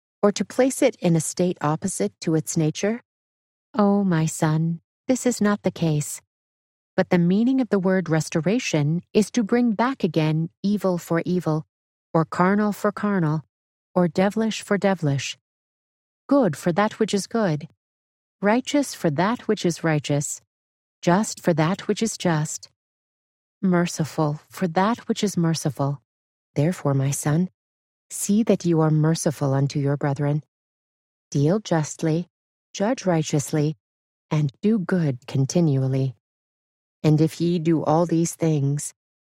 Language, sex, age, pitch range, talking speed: English, female, 40-59, 150-195 Hz, 140 wpm